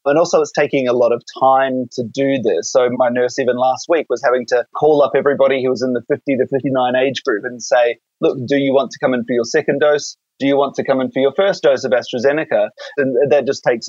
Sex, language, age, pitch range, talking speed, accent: male, English, 20-39, 120-145 Hz, 265 wpm, Australian